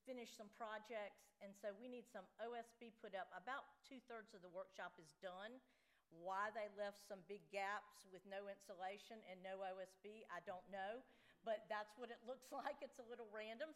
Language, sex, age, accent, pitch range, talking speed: English, female, 50-69, American, 195-235 Hz, 190 wpm